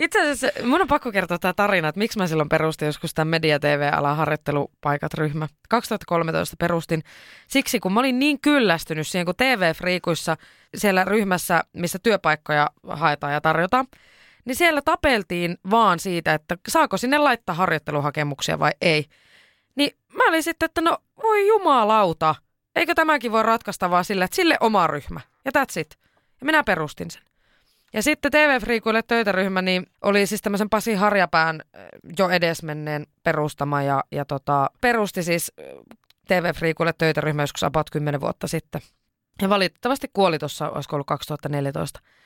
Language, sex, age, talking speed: Finnish, female, 20-39, 150 wpm